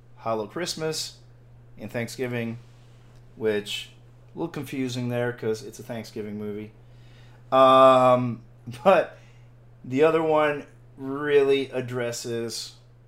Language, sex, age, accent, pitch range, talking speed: English, male, 40-59, American, 120-160 Hz, 95 wpm